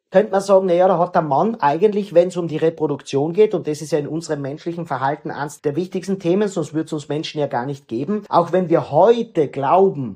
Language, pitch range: German, 155-190 Hz